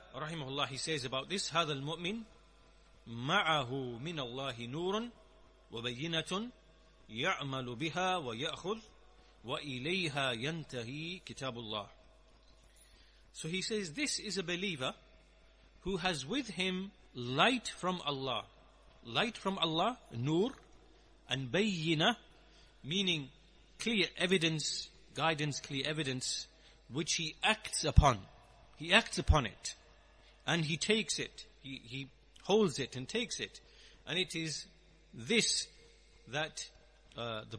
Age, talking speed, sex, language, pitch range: 40-59, 100 wpm, male, English, 130-185 Hz